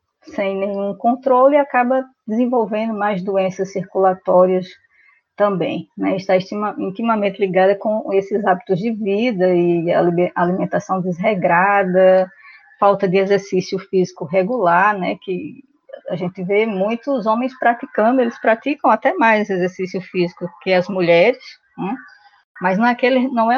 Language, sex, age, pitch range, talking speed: Portuguese, female, 20-39, 185-235 Hz, 120 wpm